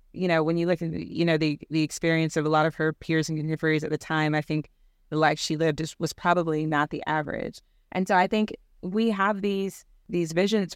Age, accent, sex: 20-39, American, female